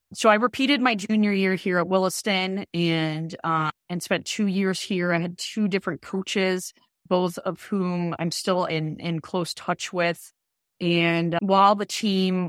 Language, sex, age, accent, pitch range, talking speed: English, female, 20-39, American, 165-185 Hz, 170 wpm